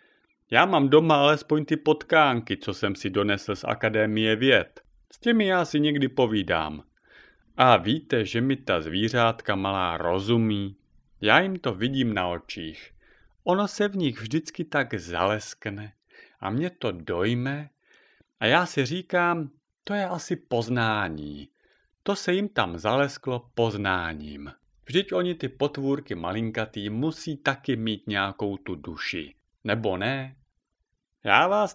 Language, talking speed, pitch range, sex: Czech, 140 wpm, 100-160 Hz, male